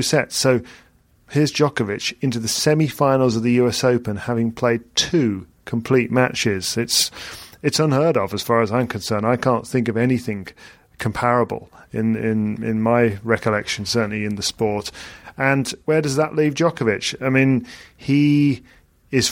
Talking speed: 155 wpm